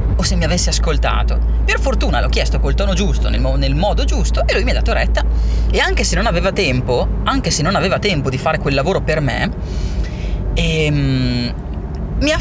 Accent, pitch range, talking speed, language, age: native, 65-75 Hz, 200 wpm, Italian, 30-49